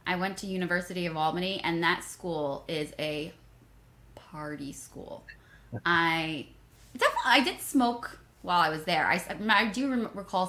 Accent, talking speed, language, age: American, 160 wpm, English, 20-39